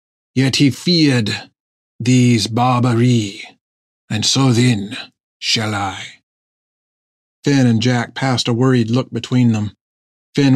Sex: male